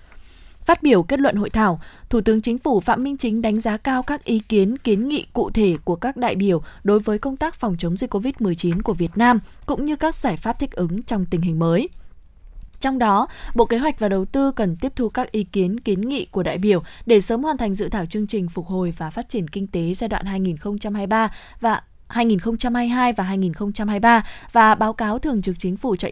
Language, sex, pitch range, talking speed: Vietnamese, female, 190-250 Hz, 225 wpm